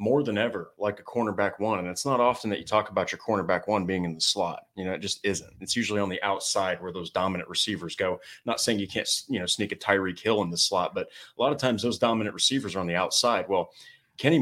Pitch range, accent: 95-115 Hz, American